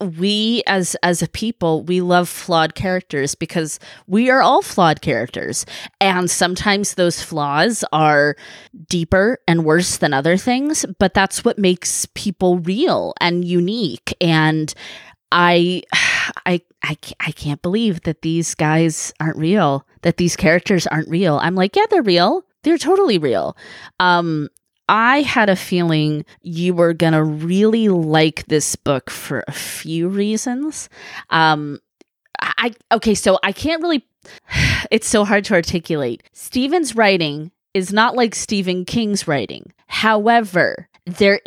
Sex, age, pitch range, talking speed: female, 20-39, 160-205 Hz, 140 wpm